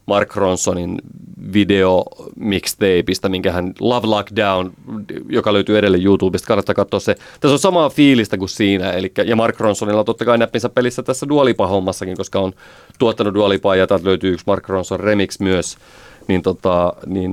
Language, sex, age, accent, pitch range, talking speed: Finnish, male, 30-49, native, 95-105 Hz, 150 wpm